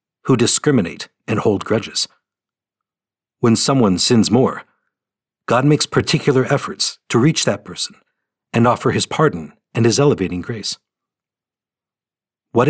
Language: English